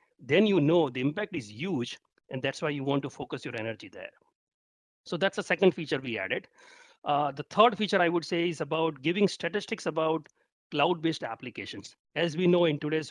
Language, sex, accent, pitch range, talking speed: English, male, Indian, 130-175 Hz, 195 wpm